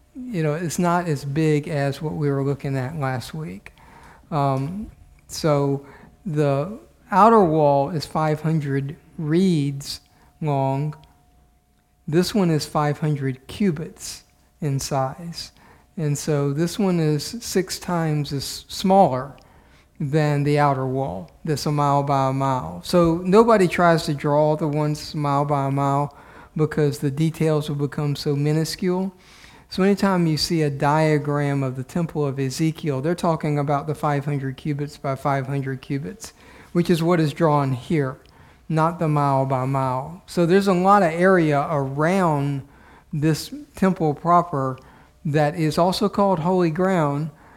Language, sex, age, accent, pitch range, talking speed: English, male, 50-69, American, 140-165 Hz, 145 wpm